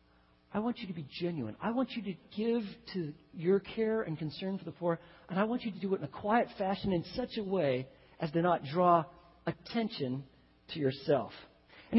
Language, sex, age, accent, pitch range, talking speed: English, male, 40-59, American, 155-215 Hz, 210 wpm